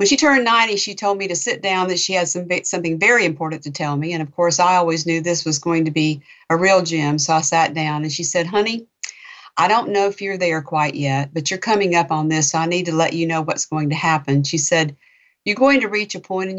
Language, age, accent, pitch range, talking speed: English, 50-69, American, 160-200 Hz, 270 wpm